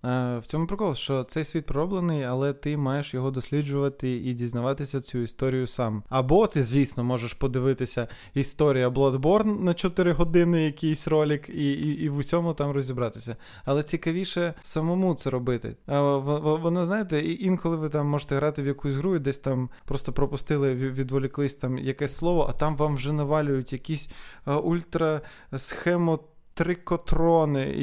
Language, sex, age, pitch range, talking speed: Ukrainian, male, 20-39, 135-165 Hz, 150 wpm